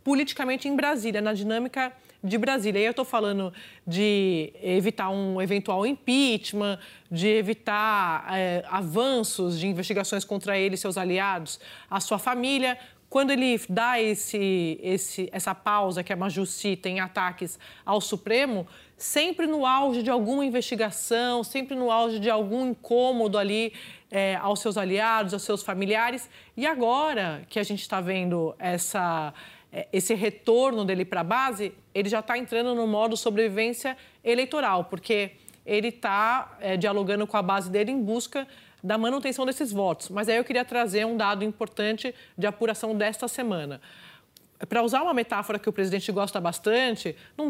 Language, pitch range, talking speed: Portuguese, 195-245 Hz, 155 wpm